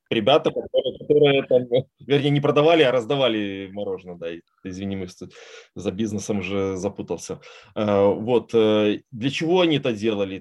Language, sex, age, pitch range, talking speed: Russian, male, 20-39, 105-125 Hz, 135 wpm